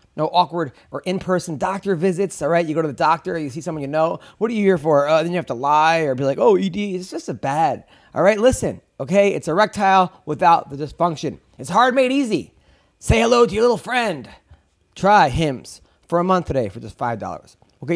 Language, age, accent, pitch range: English, 30-49, American, 135-185 Hz